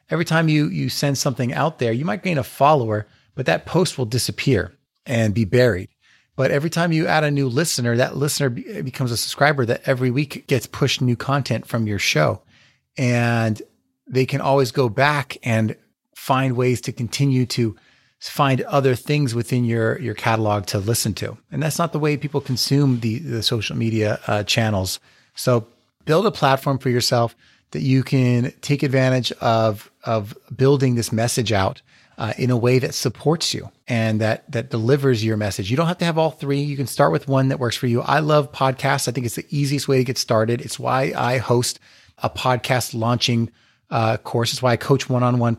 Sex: male